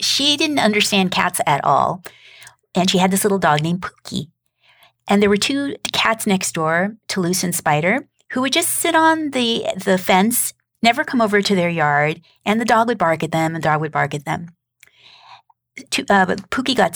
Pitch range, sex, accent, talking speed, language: 160-215 Hz, female, American, 200 wpm, English